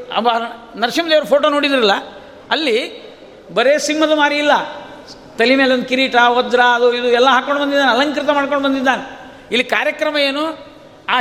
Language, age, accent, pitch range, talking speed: Kannada, 50-69, native, 250-295 Hz, 135 wpm